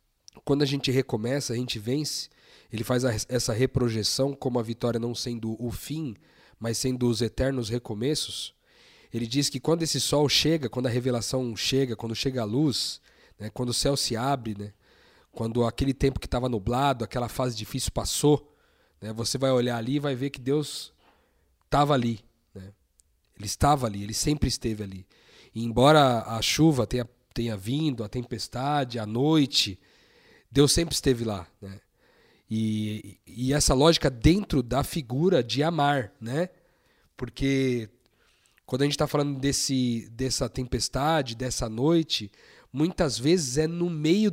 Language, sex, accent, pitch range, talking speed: Portuguese, male, Brazilian, 115-150 Hz, 160 wpm